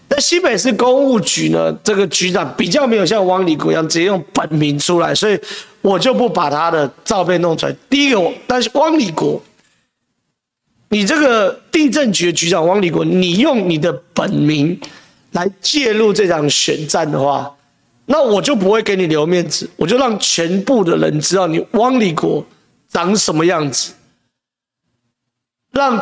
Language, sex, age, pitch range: Chinese, male, 40-59, 155-225 Hz